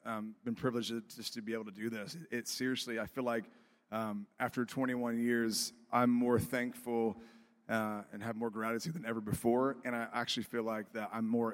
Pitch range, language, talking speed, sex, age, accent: 110-130 Hz, English, 205 wpm, male, 30-49, American